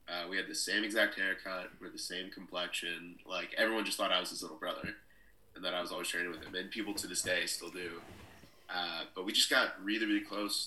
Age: 20-39